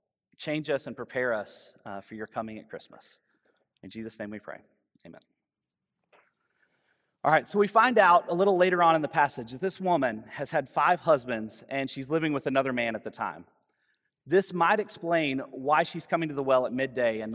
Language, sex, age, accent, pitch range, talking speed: English, male, 30-49, American, 125-170 Hz, 200 wpm